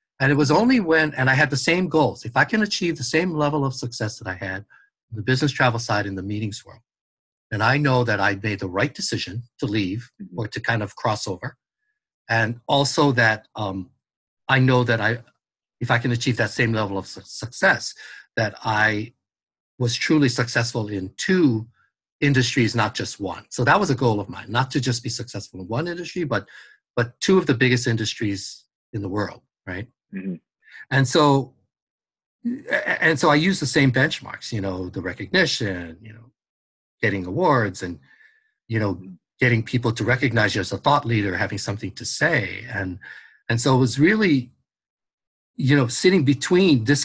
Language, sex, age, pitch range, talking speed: English, male, 60-79, 110-150 Hz, 190 wpm